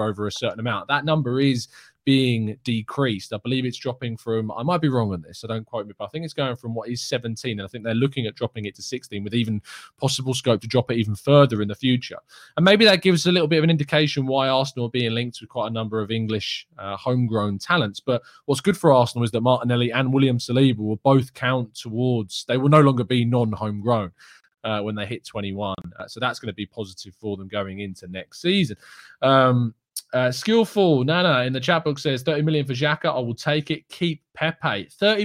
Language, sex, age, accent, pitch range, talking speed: English, male, 20-39, British, 110-145 Hz, 235 wpm